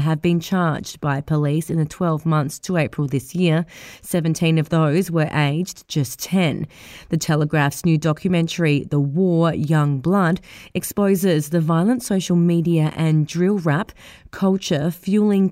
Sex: female